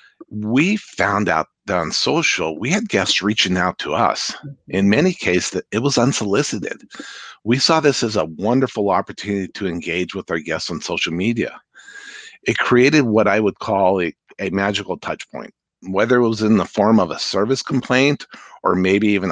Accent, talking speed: American, 185 wpm